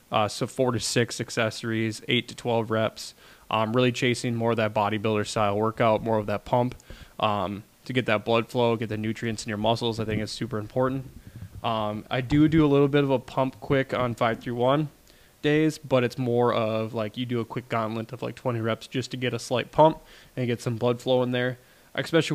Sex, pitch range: male, 110-130 Hz